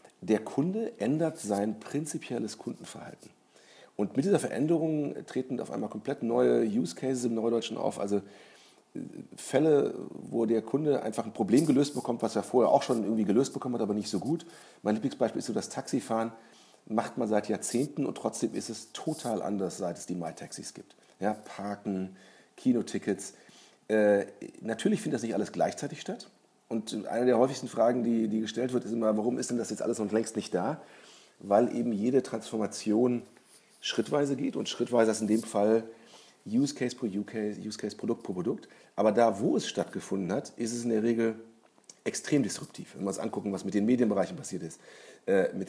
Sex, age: male, 40-59